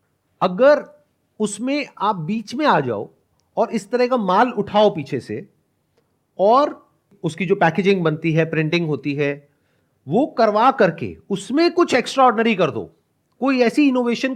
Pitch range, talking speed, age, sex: 160-235 Hz, 150 wpm, 40-59, male